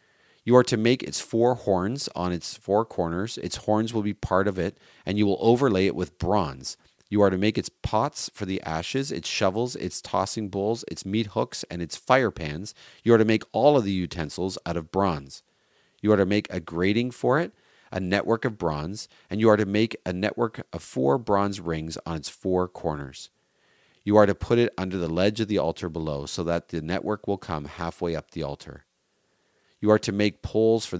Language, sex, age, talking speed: English, male, 40-59, 215 wpm